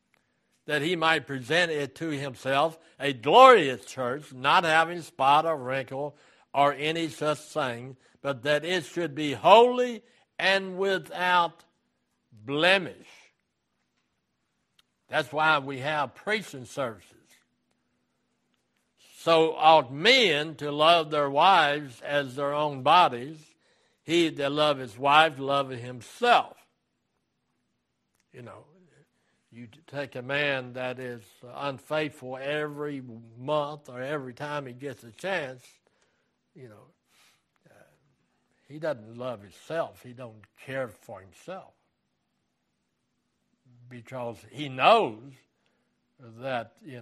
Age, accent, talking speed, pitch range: 60-79, American, 110 wpm, 125-155 Hz